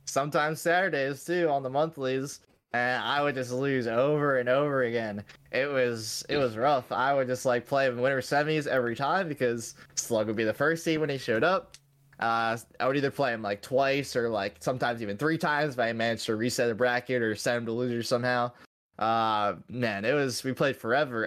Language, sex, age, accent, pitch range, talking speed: English, male, 20-39, American, 120-145 Hz, 215 wpm